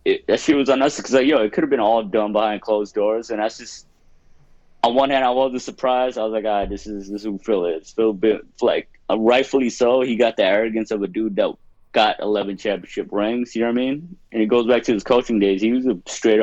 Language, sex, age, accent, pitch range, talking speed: English, male, 20-39, American, 105-120 Hz, 260 wpm